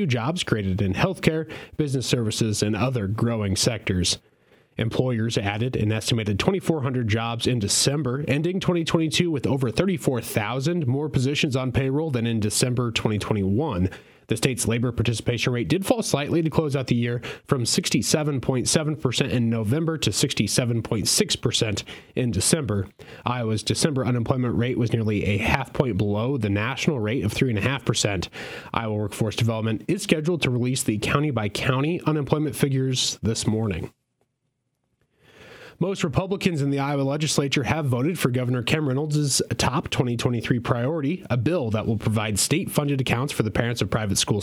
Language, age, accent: English, 30-49, American